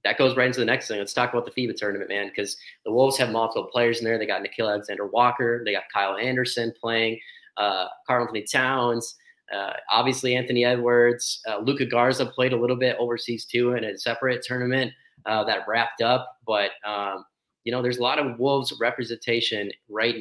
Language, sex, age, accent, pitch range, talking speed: English, male, 30-49, American, 115-125 Hz, 200 wpm